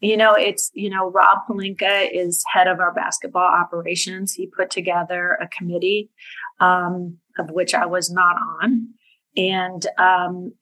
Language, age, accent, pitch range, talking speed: English, 30-49, American, 175-195 Hz, 155 wpm